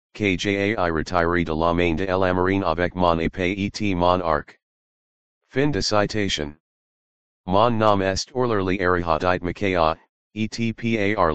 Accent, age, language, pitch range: American, 30-49, English, 85-100 Hz